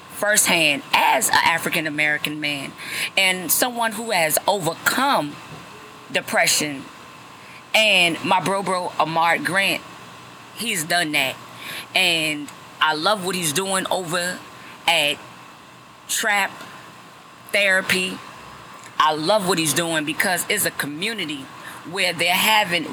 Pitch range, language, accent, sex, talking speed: 150-195 Hz, English, American, female, 110 wpm